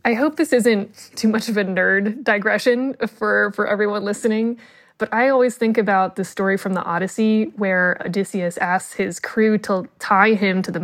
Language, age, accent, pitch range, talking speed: English, 20-39, American, 190-230 Hz, 190 wpm